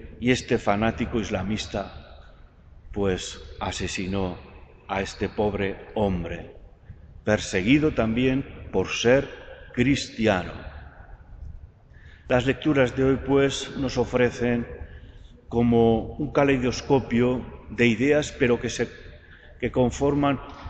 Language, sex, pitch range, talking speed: Spanish, male, 95-130 Hz, 95 wpm